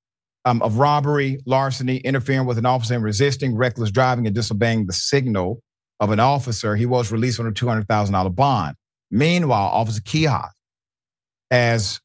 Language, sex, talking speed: English, male, 150 wpm